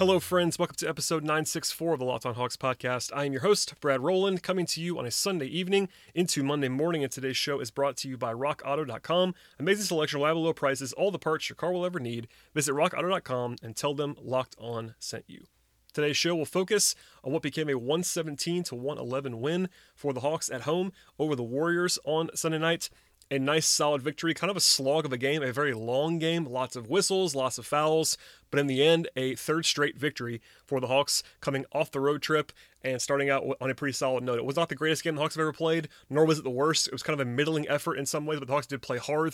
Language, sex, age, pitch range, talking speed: English, male, 30-49, 130-160 Hz, 240 wpm